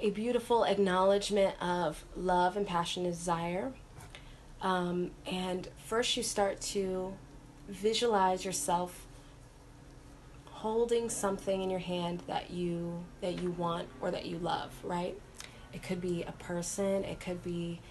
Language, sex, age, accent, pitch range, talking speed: English, female, 30-49, American, 175-205 Hz, 135 wpm